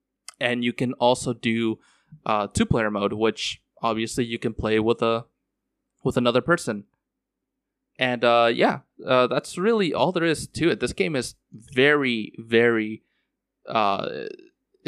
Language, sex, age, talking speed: English, male, 20-39, 140 wpm